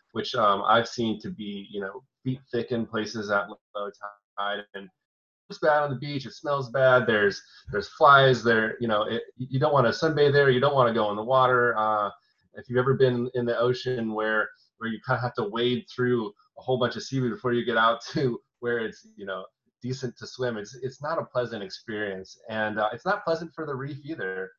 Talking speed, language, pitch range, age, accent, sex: 225 wpm, English, 105-125 Hz, 30-49, American, male